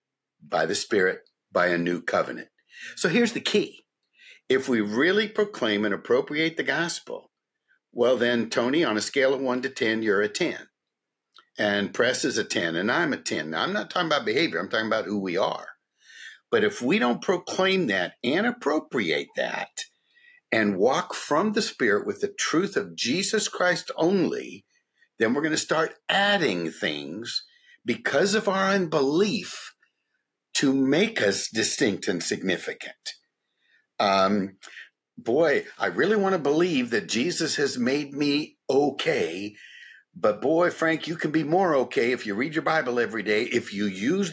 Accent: American